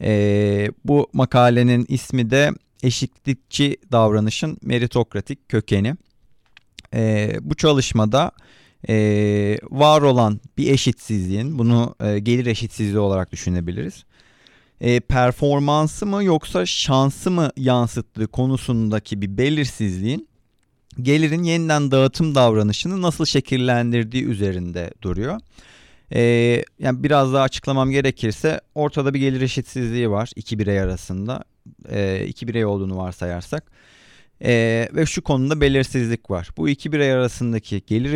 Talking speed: 110 wpm